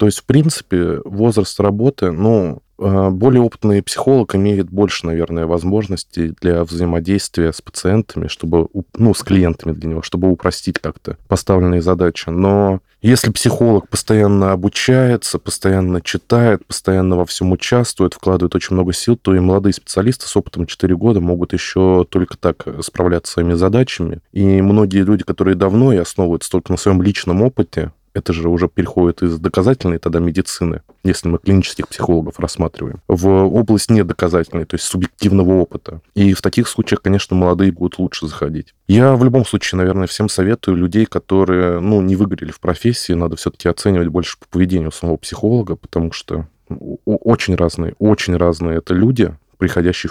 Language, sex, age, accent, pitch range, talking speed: Russian, male, 20-39, native, 85-105 Hz, 160 wpm